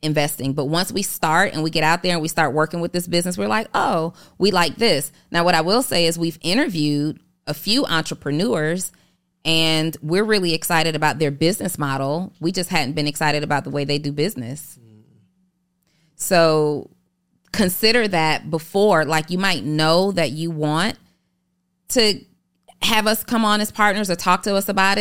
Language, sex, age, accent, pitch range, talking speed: English, female, 30-49, American, 150-185 Hz, 180 wpm